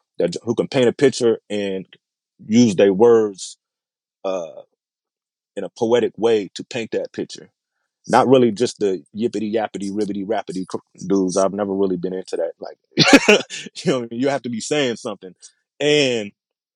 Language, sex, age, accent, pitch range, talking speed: English, male, 30-49, American, 95-120 Hz, 160 wpm